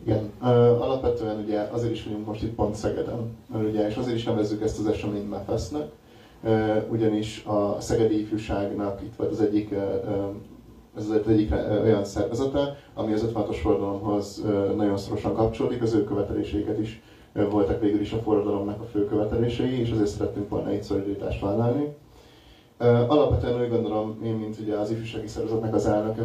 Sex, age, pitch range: male, 30-49, 105-110 Hz